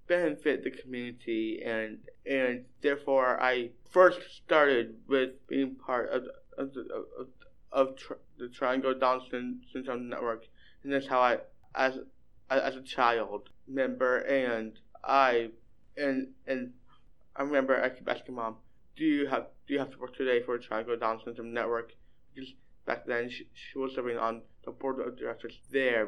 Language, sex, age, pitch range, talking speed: English, male, 20-39, 115-135 Hz, 160 wpm